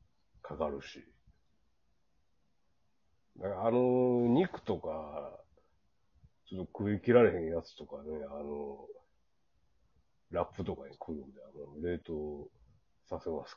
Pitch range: 80-115 Hz